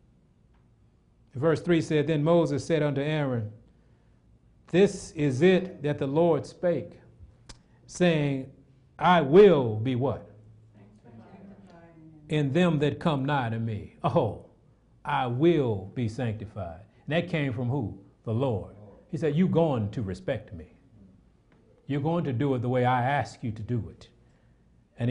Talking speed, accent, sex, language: 145 wpm, American, male, English